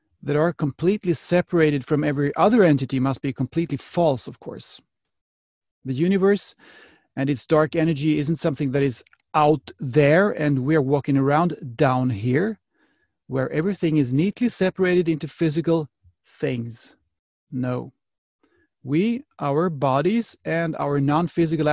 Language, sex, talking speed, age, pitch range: English, male, 130 wpm, 30-49, 135-170 Hz